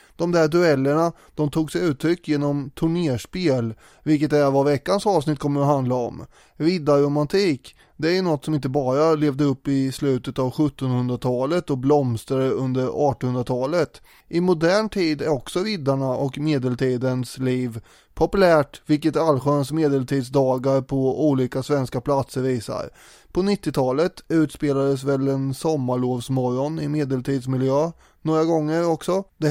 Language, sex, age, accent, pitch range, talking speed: English, male, 20-39, Swedish, 135-160 Hz, 130 wpm